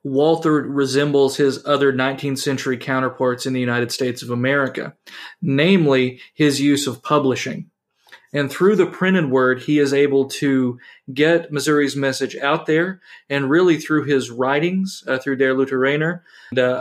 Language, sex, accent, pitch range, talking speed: English, male, American, 135-155 Hz, 155 wpm